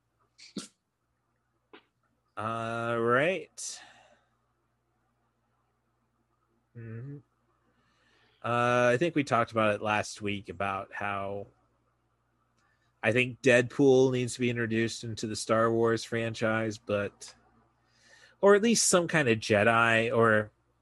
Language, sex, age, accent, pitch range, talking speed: English, male, 30-49, American, 110-135 Hz, 105 wpm